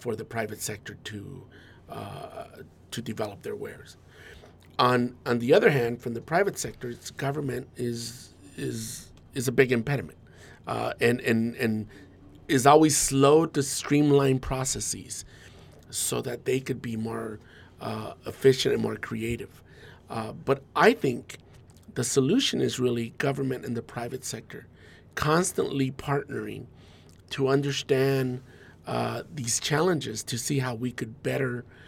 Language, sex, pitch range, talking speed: English, male, 110-135 Hz, 140 wpm